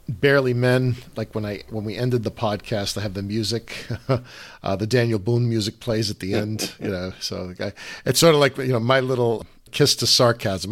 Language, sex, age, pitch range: English, male, 50-69, 95-120 Hz